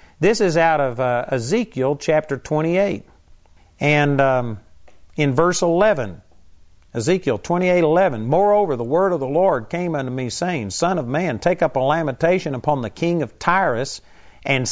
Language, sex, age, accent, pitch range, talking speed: English, male, 50-69, American, 125-165 Hz, 155 wpm